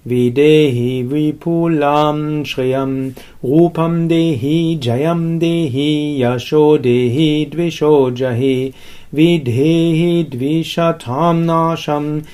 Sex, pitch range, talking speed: male, 135-165 Hz, 60 wpm